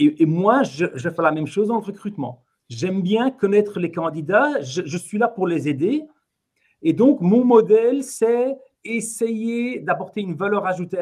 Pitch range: 170-240 Hz